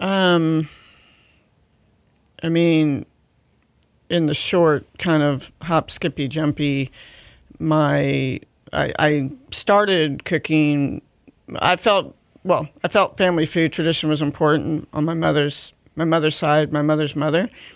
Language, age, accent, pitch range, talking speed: English, 40-59, American, 145-160 Hz, 120 wpm